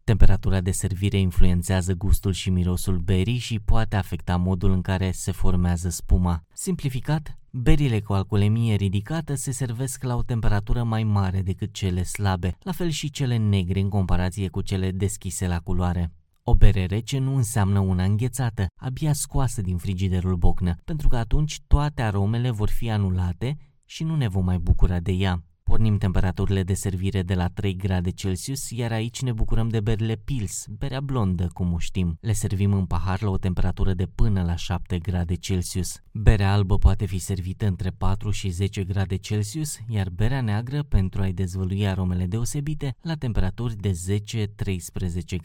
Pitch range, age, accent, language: 95-115 Hz, 20-39, native, Romanian